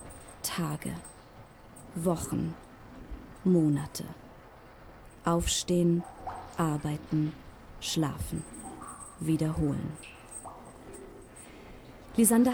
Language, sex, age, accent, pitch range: German, female, 30-49, German, 160-200 Hz